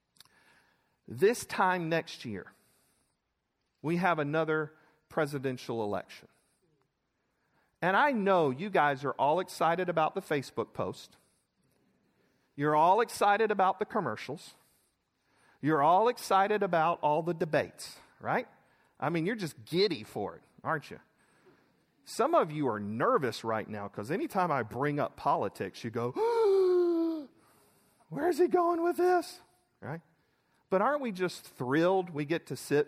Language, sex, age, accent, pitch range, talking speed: English, male, 40-59, American, 150-250 Hz, 135 wpm